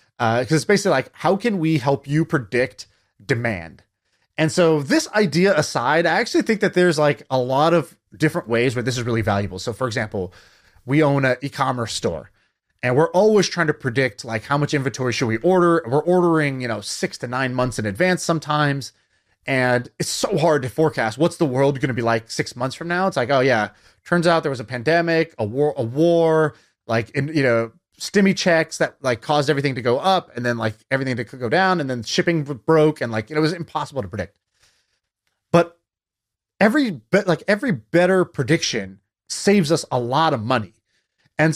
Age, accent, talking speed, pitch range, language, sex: 30-49, American, 205 wpm, 120-165 Hz, English, male